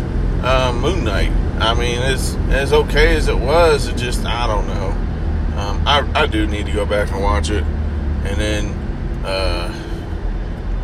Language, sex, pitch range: English, male, 80-110 Hz